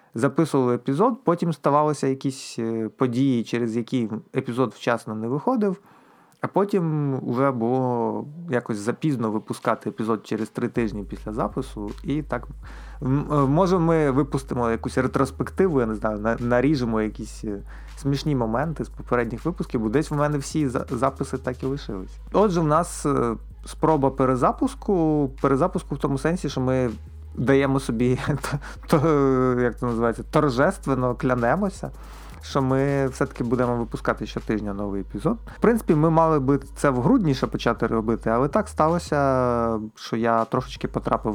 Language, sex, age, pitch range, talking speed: Ukrainian, male, 30-49, 115-145 Hz, 140 wpm